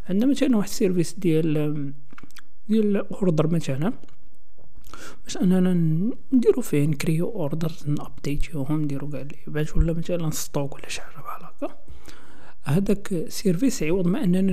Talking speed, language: 135 wpm, Arabic